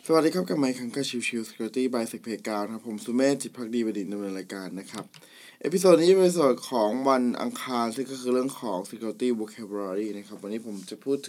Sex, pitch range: male, 115-150 Hz